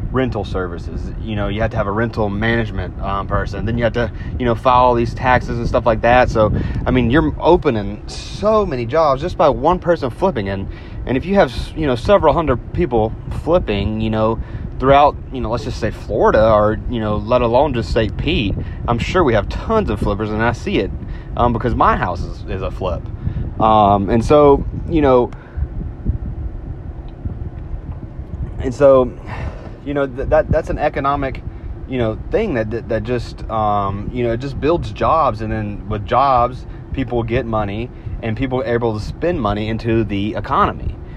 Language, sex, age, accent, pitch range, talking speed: English, male, 30-49, American, 105-130 Hz, 190 wpm